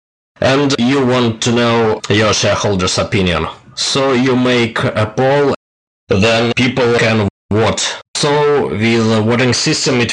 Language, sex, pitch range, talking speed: English, male, 95-115 Hz, 135 wpm